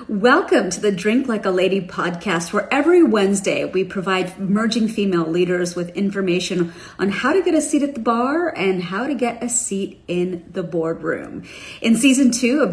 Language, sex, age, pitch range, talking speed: English, female, 40-59, 185-245 Hz, 190 wpm